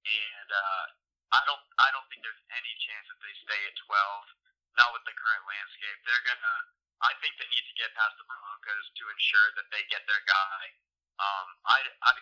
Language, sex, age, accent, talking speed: English, male, 20-39, American, 195 wpm